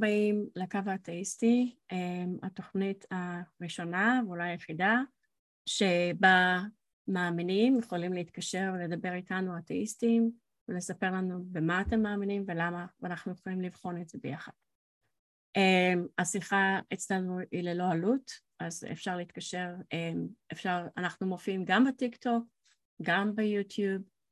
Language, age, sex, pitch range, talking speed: Hebrew, 30-49, female, 180-225 Hz, 105 wpm